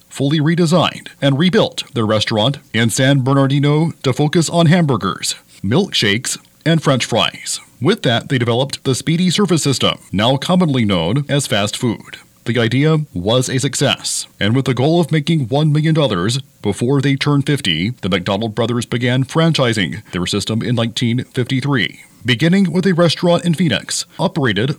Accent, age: American, 40-59